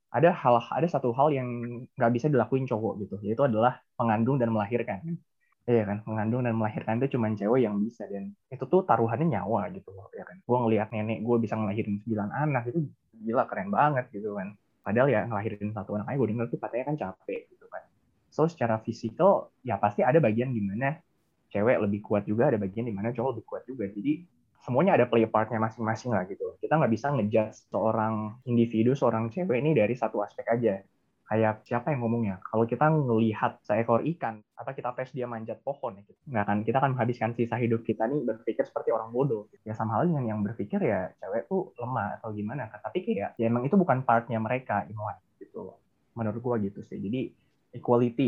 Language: Indonesian